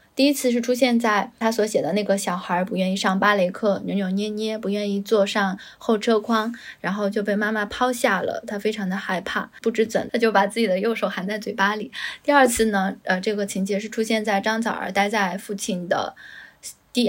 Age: 10-29